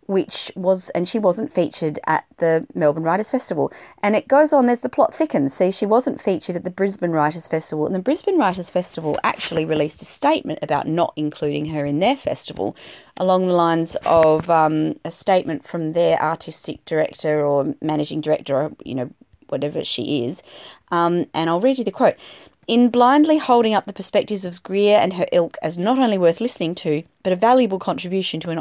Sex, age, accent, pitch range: female, 30-49, Australian, 160-210 Hz